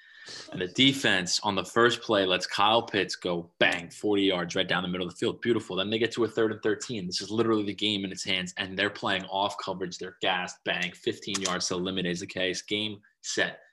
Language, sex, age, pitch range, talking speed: English, male, 20-39, 100-145 Hz, 245 wpm